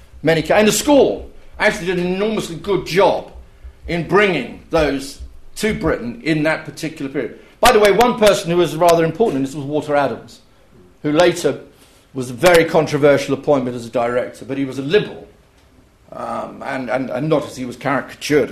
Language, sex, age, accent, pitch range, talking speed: English, male, 50-69, British, 135-185 Hz, 180 wpm